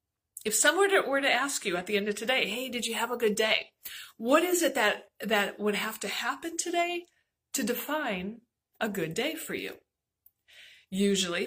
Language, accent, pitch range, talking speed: English, American, 195-260 Hz, 190 wpm